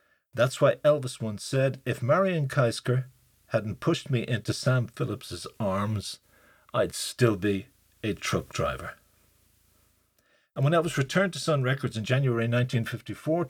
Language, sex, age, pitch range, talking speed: English, male, 50-69, 115-145 Hz, 140 wpm